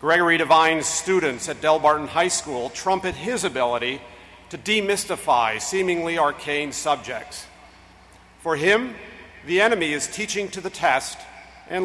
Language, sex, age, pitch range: English, male, 50-69, 145-200 Hz